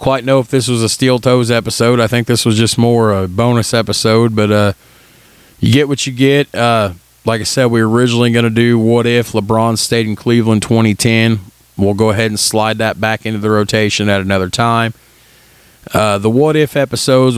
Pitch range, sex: 100-120 Hz, male